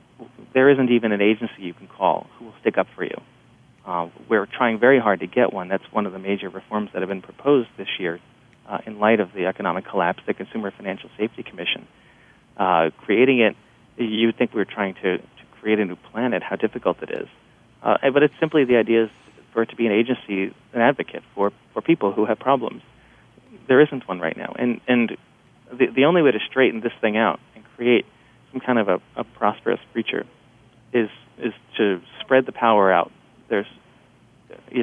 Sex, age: male, 30-49